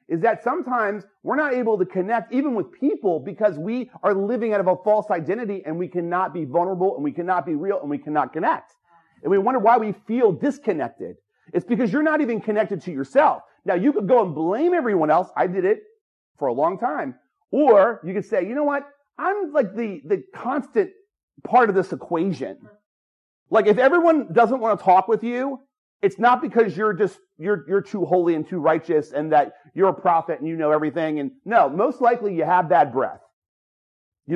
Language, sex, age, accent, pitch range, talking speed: English, male, 40-59, American, 165-260 Hz, 210 wpm